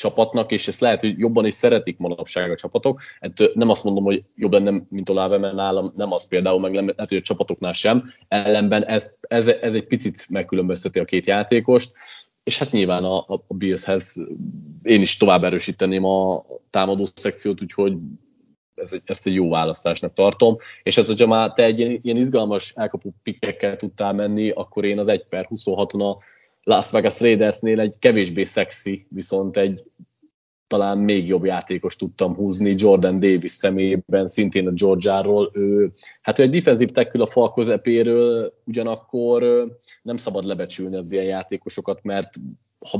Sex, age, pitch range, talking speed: male, 30-49, 95-110 Hz, 165 wpm